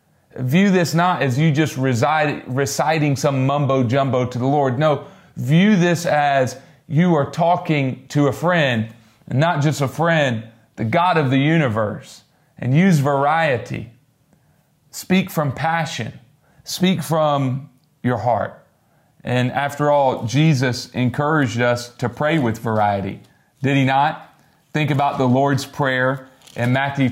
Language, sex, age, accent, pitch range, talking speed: English, male, 40-59, American, 125-150 Hz, 135 wpm